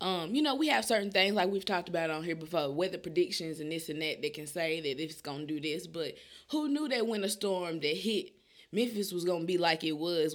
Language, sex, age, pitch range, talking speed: English, female, 20-39, 200-310 Hz, 275 wpm